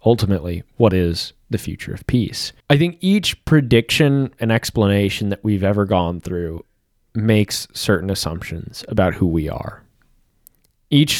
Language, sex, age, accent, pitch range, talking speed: English, male, 20-39, American, 95-115 Hz, 140 wpm